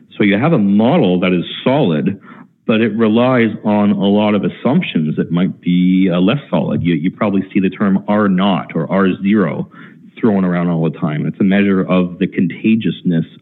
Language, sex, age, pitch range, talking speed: English, male, 40-59, 85-100 Hz, 190 wpm